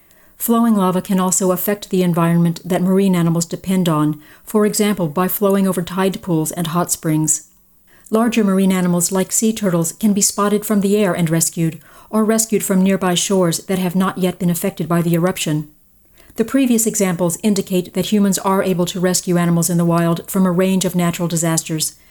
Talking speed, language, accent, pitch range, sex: 190 wpm, English, American, 170-200 Hz, female